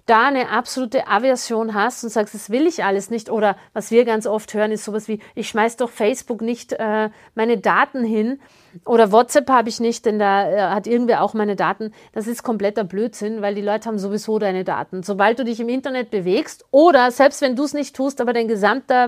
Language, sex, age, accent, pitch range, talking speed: German, female, 50-69, German, 210-260 Hz, 215 wpm